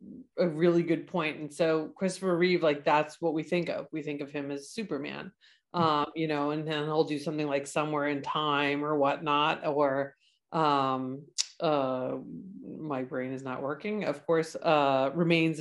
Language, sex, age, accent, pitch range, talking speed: English, female, 40-59, American, 145-175 Hz, 175 wpm